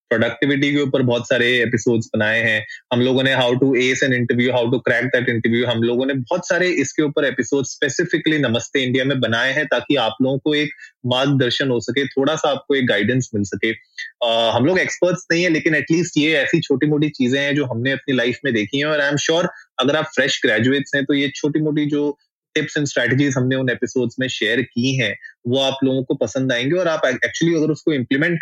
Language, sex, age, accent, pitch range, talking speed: Hindi, male, 20-39, native, 120-145 Hz, 230 wpm